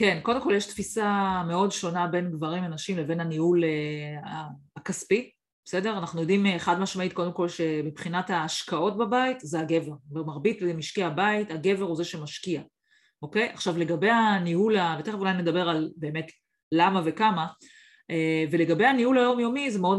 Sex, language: female, Hebrew